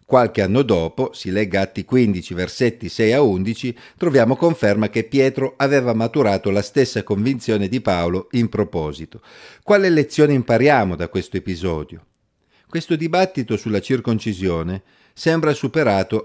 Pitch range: 100-135 Hz